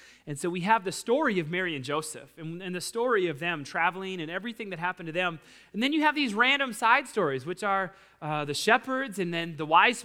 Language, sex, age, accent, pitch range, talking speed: English, male, 30-49, American, 190-250 Hz, 240 wpm